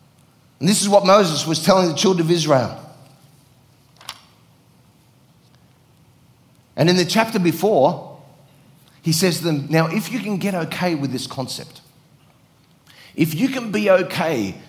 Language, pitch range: English, 135-175 Hz